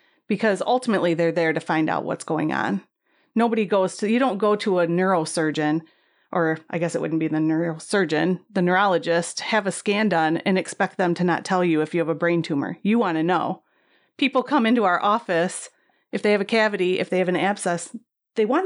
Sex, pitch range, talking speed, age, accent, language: female, 170-215 Hz, 215 wpm, 30-49, American, English